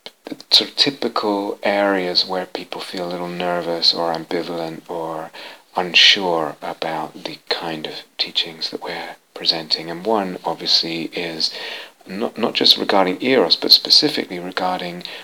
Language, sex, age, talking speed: English, male, 40-59, 140 wpm